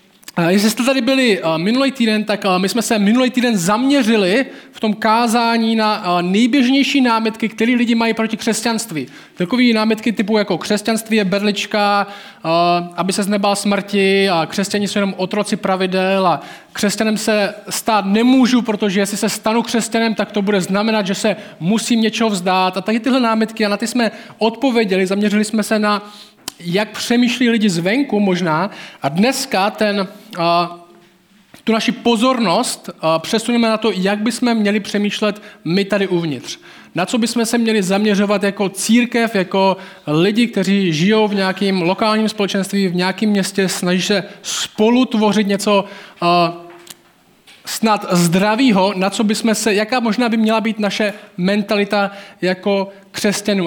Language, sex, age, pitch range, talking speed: Czech, male, 20-39, 185-225 Hz, 155 wpm